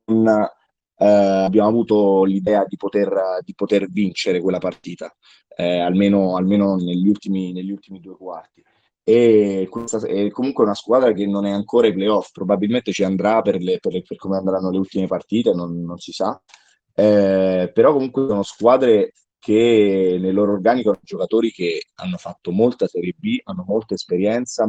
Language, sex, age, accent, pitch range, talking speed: Italian, male, 20-39, native, 90-110 Hz, 170 wpm